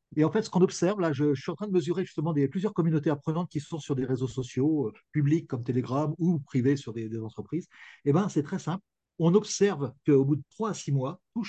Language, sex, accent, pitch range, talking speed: French, male, French, 130-180 Hz, 260 wpm